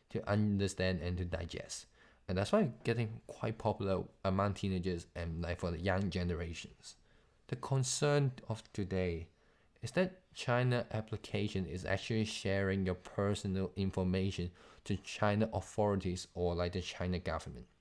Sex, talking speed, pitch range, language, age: male, 140 wpm, 90-105 Hz, English, 20-39